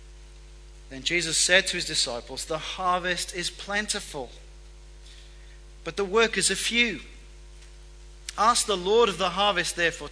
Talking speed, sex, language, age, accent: 130 wpm, male, English, 40-59, British